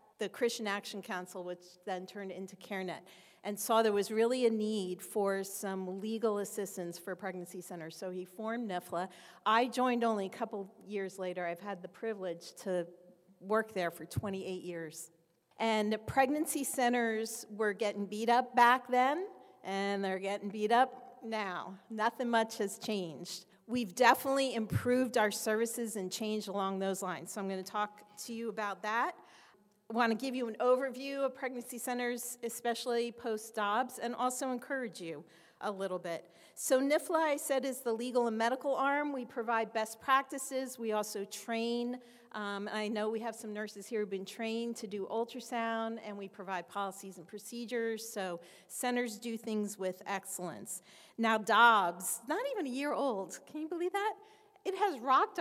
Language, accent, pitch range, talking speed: English, American, 195-245 Hz, 175 wpm